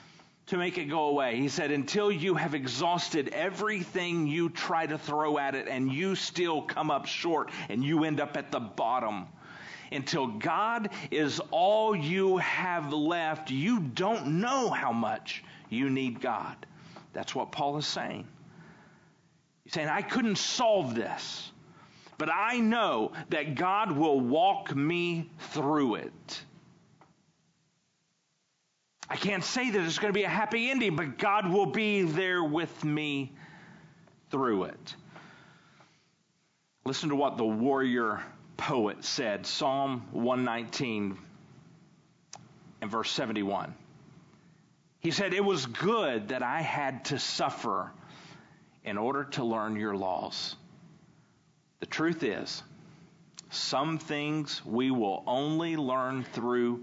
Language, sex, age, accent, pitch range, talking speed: English, male, 40-59, American, 145-185 Hz, 130 wpm